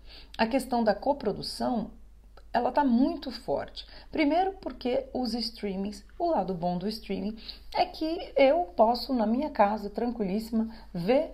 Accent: Brazilian